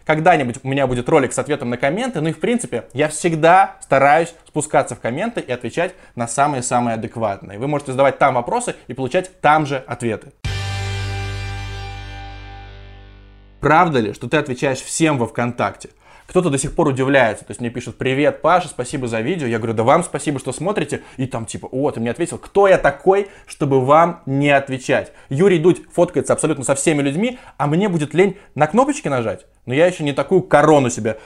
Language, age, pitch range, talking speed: Russian, 20-39, 125-165 Hz, 190 wpm